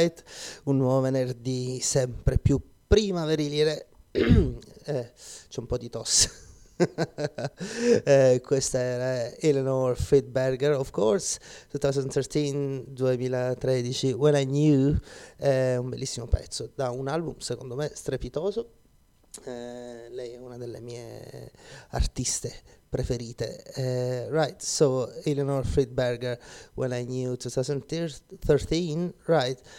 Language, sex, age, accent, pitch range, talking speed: Italian, male, 30-49, native, 125-145 Hz, 105 wpm